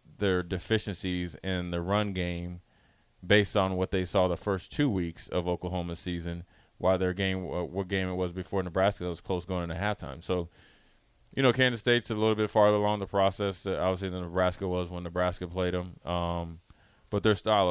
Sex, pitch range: male, 90-105 Hz